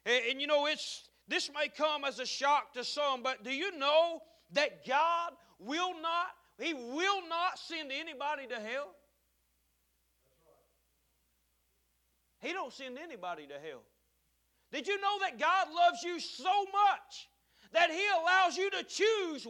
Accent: American